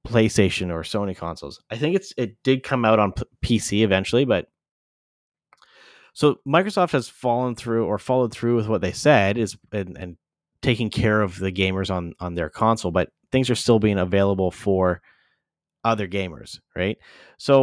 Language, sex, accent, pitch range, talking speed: English, male, American, 95-125 Hz, 175 wpm